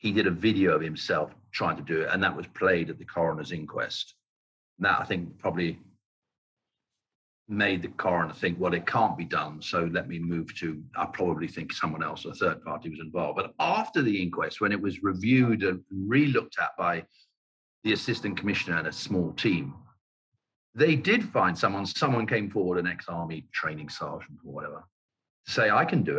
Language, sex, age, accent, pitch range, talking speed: English, male, 40-59, British, 85-110 Hz, 190 wpm